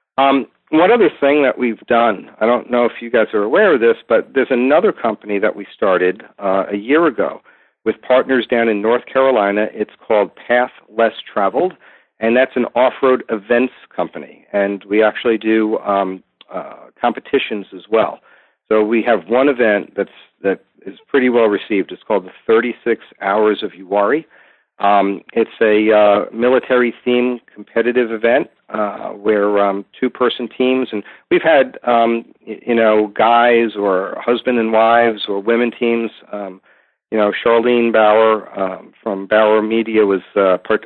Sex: male